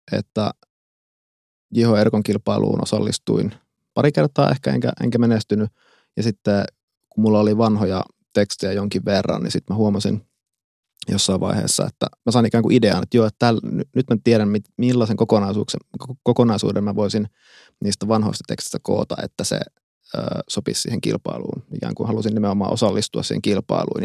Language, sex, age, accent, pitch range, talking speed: Finnish, male, 20-39, native, 100-120 Hz, 150 wpm